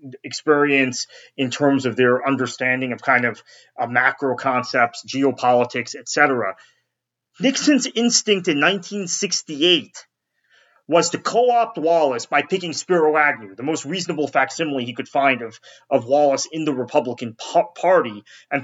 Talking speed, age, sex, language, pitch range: 130 wpm, 30-49, male, English, 125-155 Hz